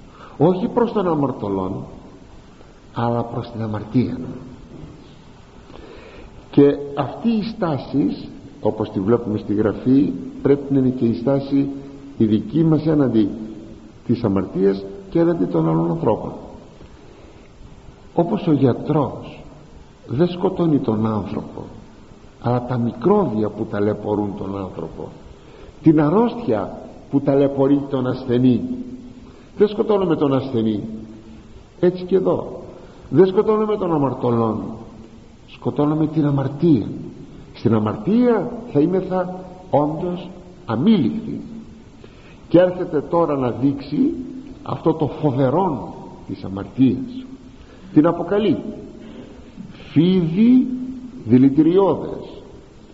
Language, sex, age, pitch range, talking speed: Greek, male, 50-69, 115-180 Hz, 100 wpm